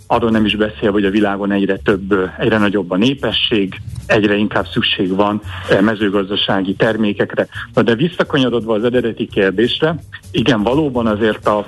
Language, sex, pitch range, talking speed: Hungarian, male, 105-130 Hz, 140 wpm